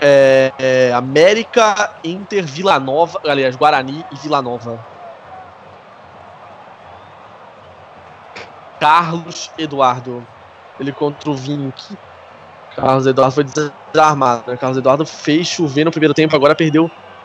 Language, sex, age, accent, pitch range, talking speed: Portuguese, male, 20-39, Brazilian, 135-160 Hz, 110 wpm